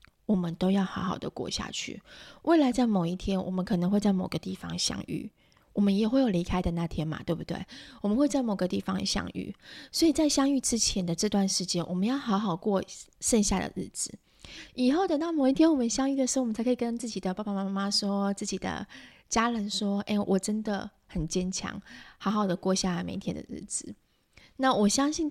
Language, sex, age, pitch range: Chinese, female, 20-39, 185-230 Hz